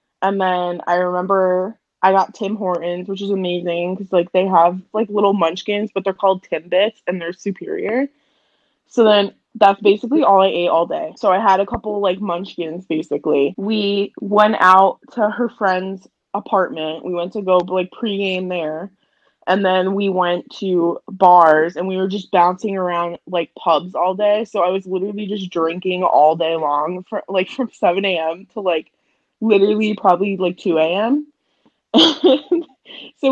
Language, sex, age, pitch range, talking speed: English, female, 20-39, 180-210 Hz, 165 wpm